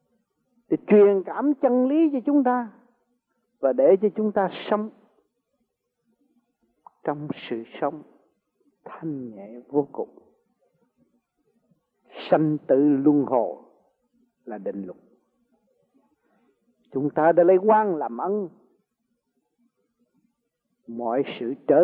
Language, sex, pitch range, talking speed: Vietnamese, male, 175-245 Hz, 105 wpm